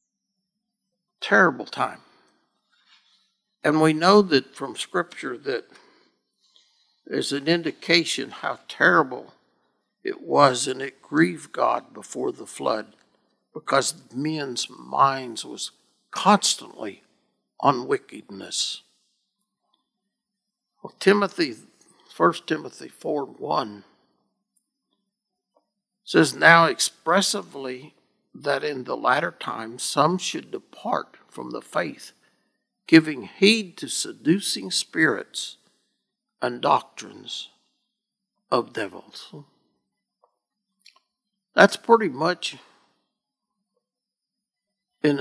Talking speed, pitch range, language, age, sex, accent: 85 wpm, 150-210 Hz, English, 60-79, male, American